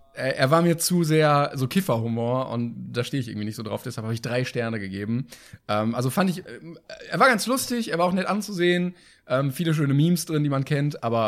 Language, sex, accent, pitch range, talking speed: German, male, German, 115-160 Hz, 230 wpm